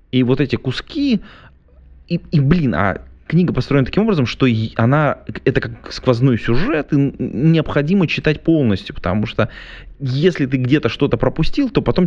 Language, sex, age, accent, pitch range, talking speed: Russian, male, 20-39, native, 105-145 Hz, 155 wpm